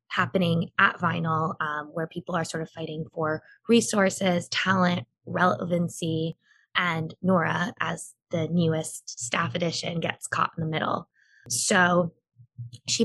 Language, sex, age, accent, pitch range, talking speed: English, female, 20-39, American, 160-195 Hz, 130 wpm